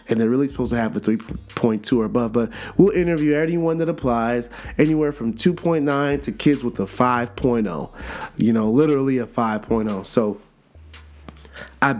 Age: 30-49